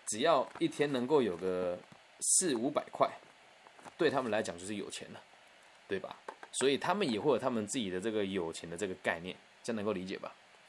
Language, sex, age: Chinese, male, 20-39